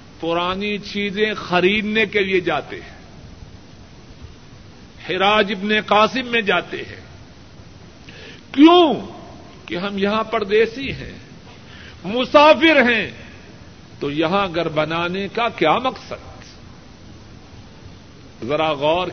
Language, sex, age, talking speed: Urdu, male, 50-69, 95 wpm